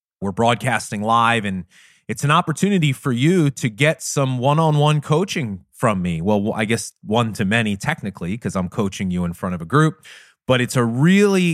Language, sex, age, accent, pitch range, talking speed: English, male, 30-49, American, 100-140 Hz, 185 wpm